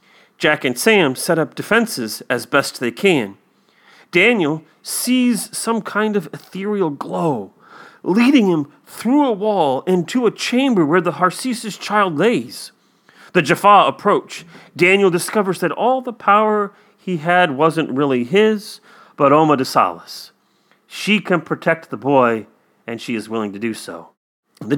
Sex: male